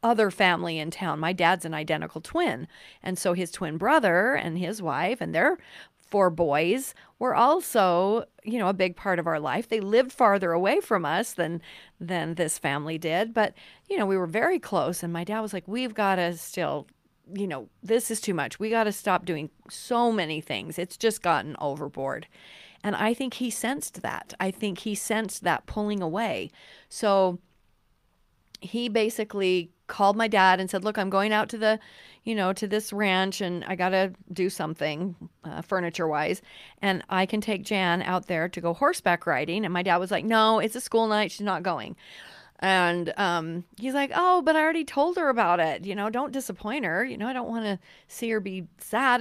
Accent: American